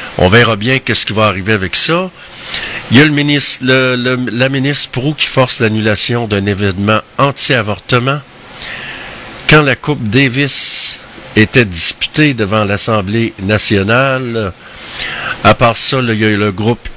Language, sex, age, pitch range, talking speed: French, male, 60-79, 105-130 Hz, 160 wpm